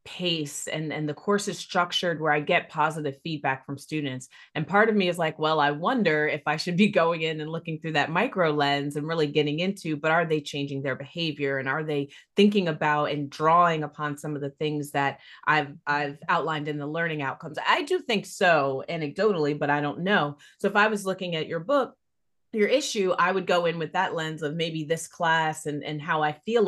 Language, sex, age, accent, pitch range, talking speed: English, female, 30-49, American, 145-180 Hz, 225 wpm